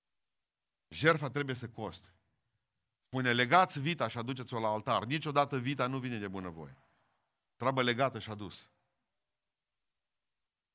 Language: Romanian